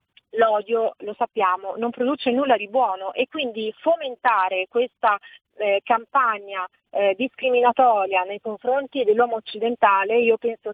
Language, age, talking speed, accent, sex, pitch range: Italian, 30-49, 125 wpm, native, female, 200-245 Hz